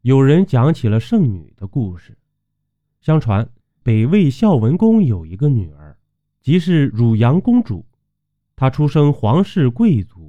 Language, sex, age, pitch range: Chinese, male, 30-49, 110-180 Hz